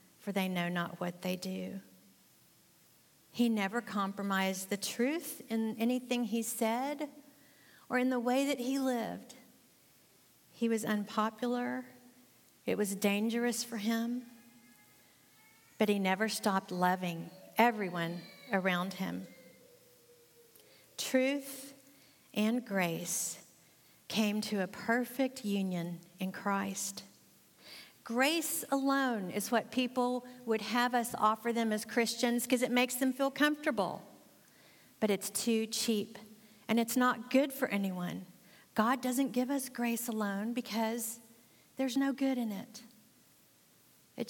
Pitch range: 200-250 Hz